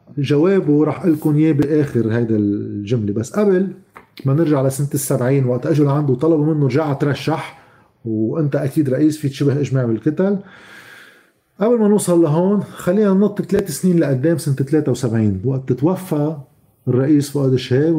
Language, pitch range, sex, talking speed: Arabic, 130-170 Hz, male, 145 wpm